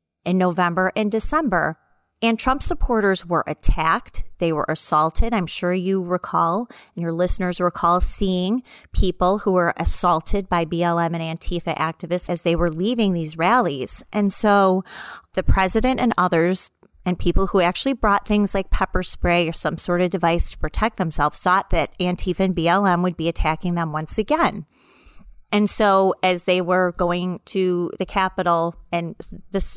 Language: English